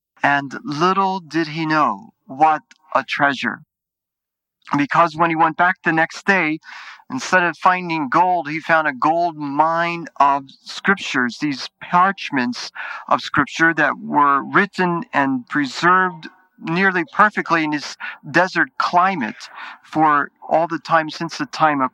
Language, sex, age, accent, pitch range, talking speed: English, male, 40-59, American, 145-180 Hz, 135 wpm